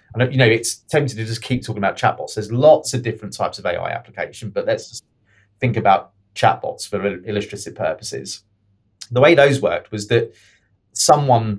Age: 30-49